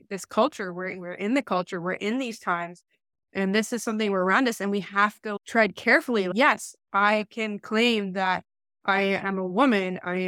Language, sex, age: English, female, 20-39